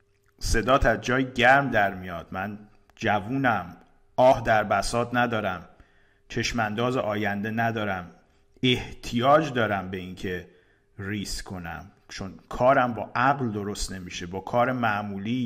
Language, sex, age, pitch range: Persian, male, 50-69, 100-125 Hz